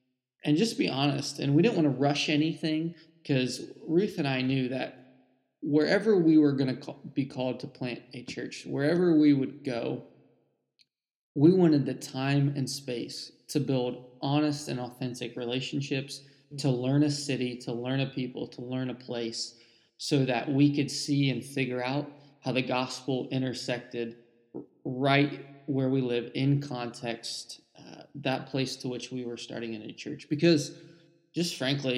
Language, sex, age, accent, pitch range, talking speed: English, male, 20-39, American, 125-145 Hz, 165 wpm